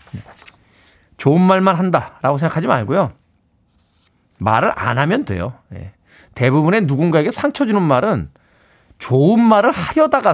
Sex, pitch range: male, 105-165 Hz